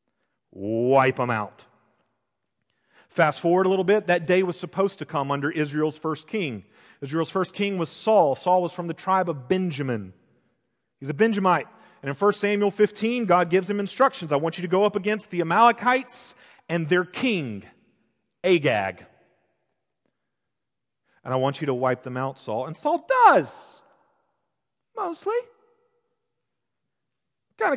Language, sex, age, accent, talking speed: English, male, 40-59, American, 150 wpm